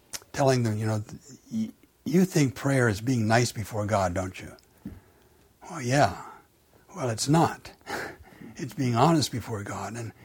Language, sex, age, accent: English, male, 60-79, American